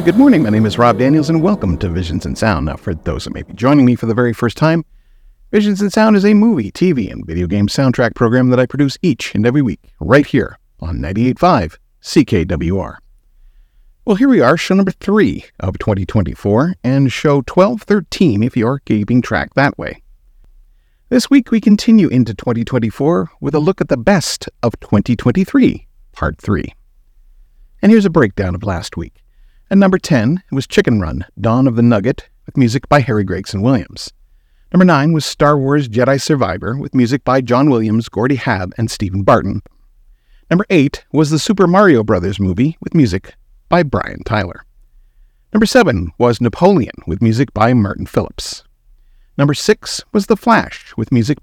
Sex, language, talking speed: male, English, 180 wpm